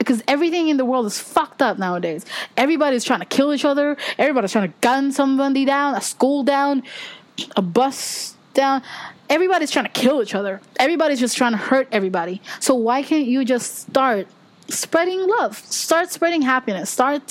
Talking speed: 175 wpm